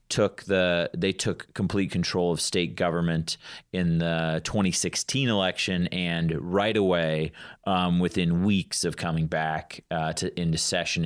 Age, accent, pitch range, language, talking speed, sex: 30-49, American, 80-85 Hz, English, 140 wpm, male